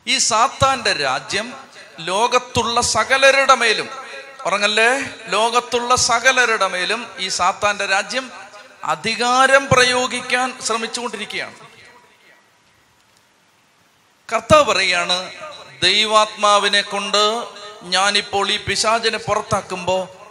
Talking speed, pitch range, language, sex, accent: 70 wpm, 175-225 Hz, Malayalam, male, native